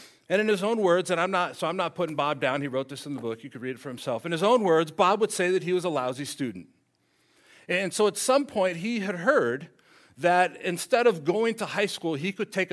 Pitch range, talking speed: 160-200 Hz, 270 wpm